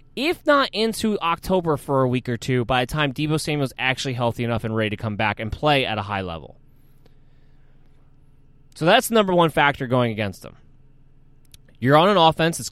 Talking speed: 200 wpm